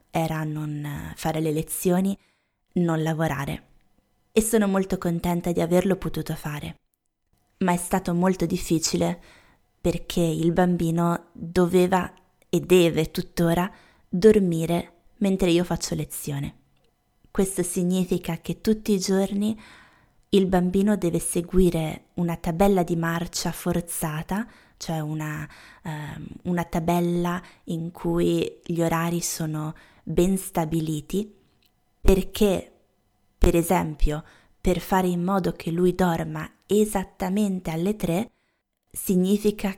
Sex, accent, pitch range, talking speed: female, native, 170-195 Hz, 110 wpm